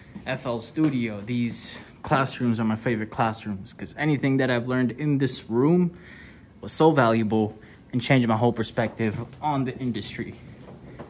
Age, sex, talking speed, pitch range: 20-39, male, 145 wpm, 110-130 Hz